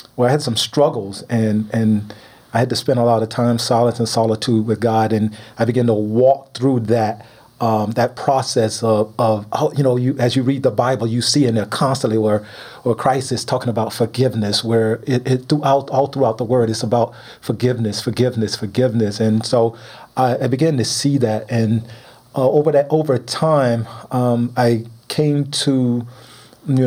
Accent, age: American, 40-59